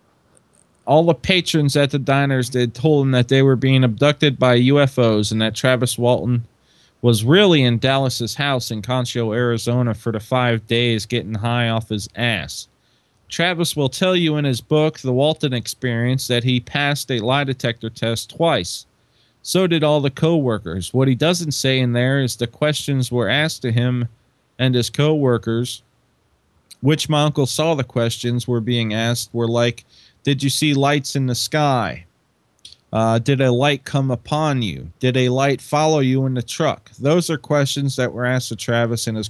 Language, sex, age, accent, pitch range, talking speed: English, male, 20-39, American, 120-145 Hz, 180 wpm